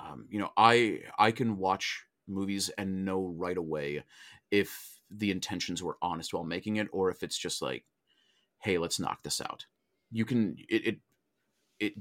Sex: male